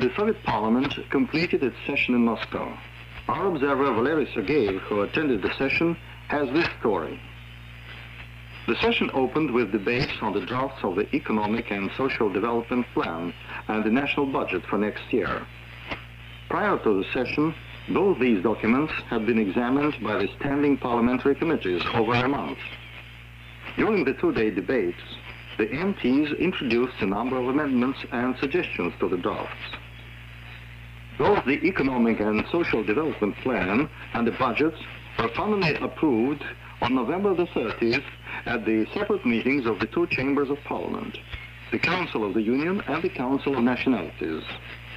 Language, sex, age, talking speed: Italian, male, 60-79, 150 wpm